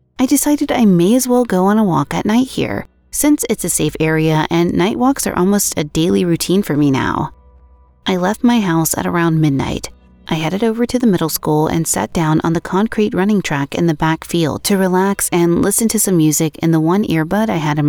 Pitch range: 150-195 Hz